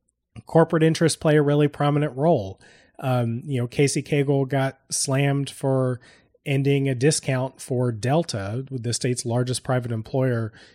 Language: English